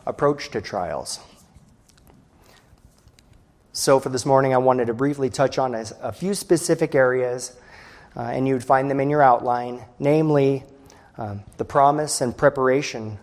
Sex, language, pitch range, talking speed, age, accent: male, English, 125-170 Hz, 145 wpm, 30-49, American